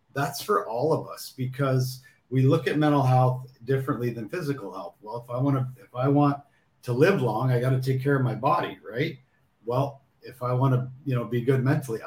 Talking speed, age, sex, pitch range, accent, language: 225 wpm, 50-69, male, 120-140 Hz, American, English